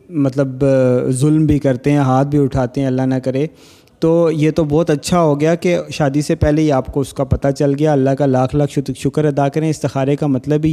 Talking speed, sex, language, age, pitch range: 235 wpm, male, Urdu, 30-49, 135-155 Hz